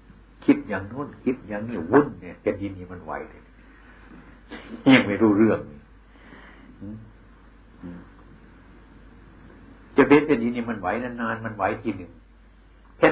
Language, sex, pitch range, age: Thai, male, 95-125 Hz, 60-79